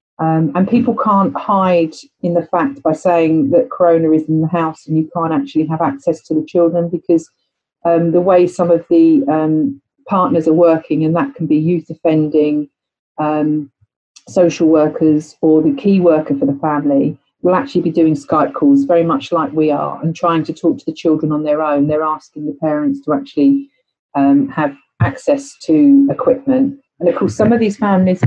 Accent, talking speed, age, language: British, 195 wpm, 40-59, English